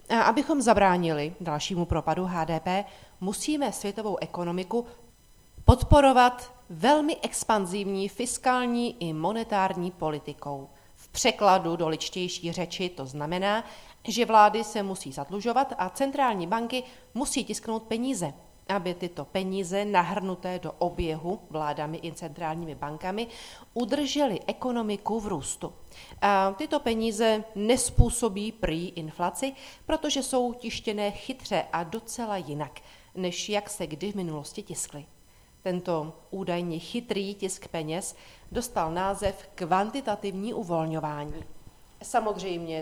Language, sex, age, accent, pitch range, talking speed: Czech, female, 40-59, native, 165-215 Hz, 110 wpm